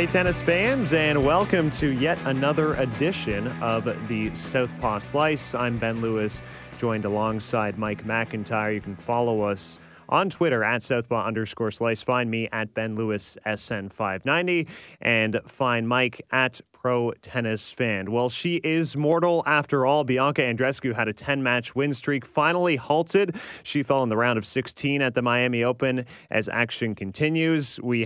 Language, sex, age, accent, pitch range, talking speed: English, male, 30-49, American, 115-150 Hz, 160 wpm